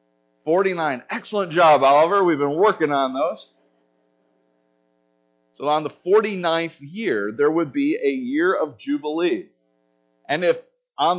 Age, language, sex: 40-59, English, male